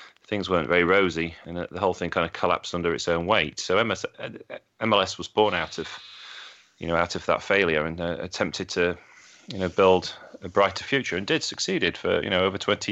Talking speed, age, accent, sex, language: 215 wpm, 30-49, British, male, English